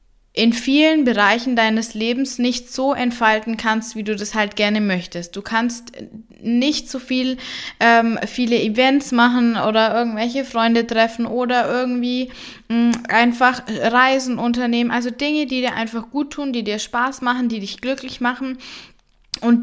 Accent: German